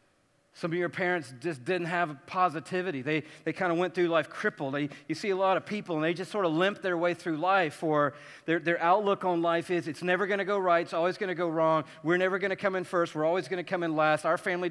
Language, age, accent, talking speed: English, 40-59, American, 275 wpm